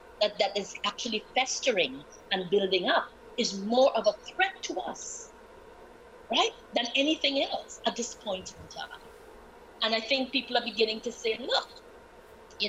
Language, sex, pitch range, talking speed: English, female, 225-330 Hz, 155 wpm